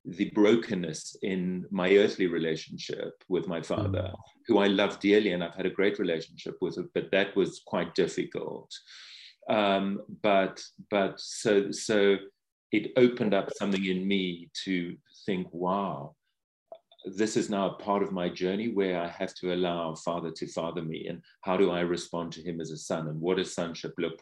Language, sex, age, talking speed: English, male, 40-59, 175 wpm